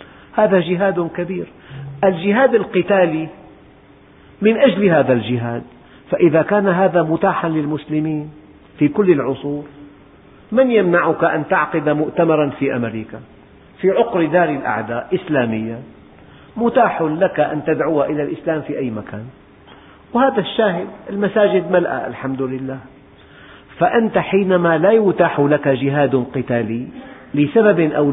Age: 50-69